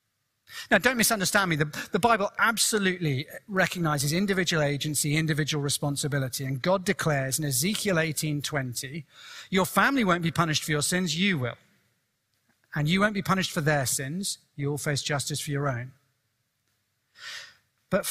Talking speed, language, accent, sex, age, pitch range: 145 wpm, English, British, male, 40-59, 130-175 Hz